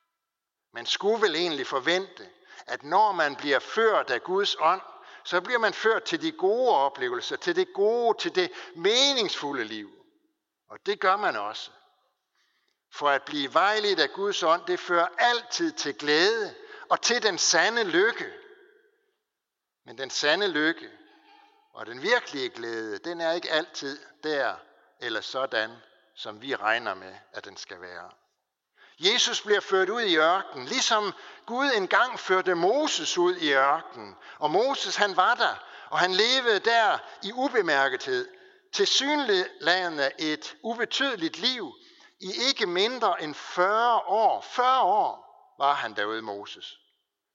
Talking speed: 145 wpm